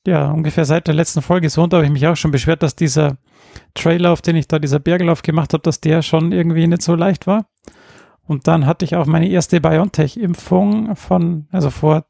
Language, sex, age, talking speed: German, male, 30-49, 220 wpm